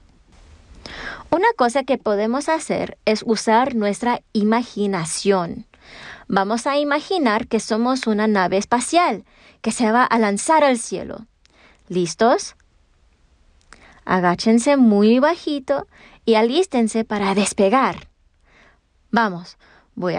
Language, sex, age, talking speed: English, female, 30-49, 100 wpm